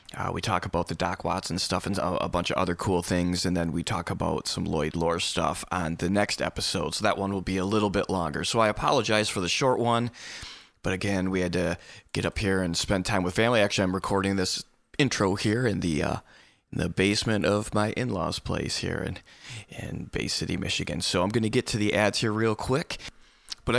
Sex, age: male, 20-39